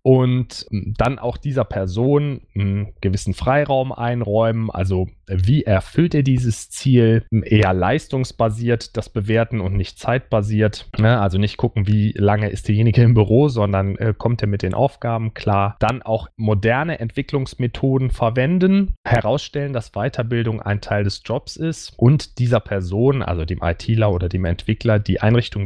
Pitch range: 100-130 Hz